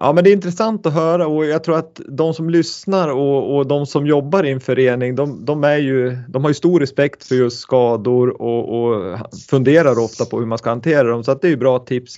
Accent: native